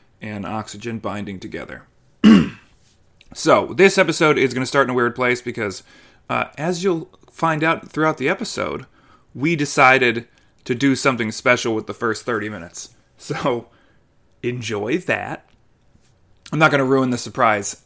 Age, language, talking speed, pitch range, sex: 20-39, English, 150 wpm, 110-135 Hz, male